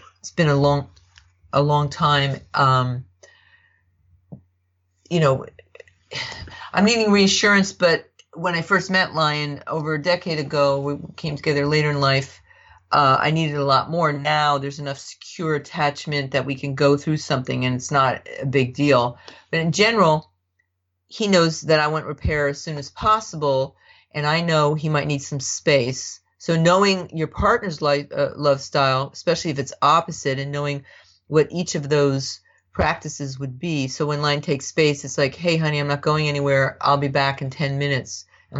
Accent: American